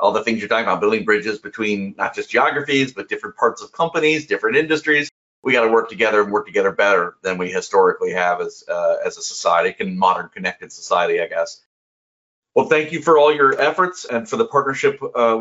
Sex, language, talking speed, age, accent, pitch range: male, English, 215 wpm, 40-59, American, 105-150 Hz